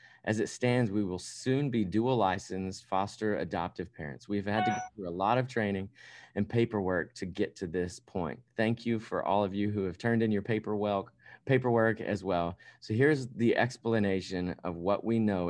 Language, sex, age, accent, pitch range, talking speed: English, male, 30-49, American, 90-110 Hz, 195 wpm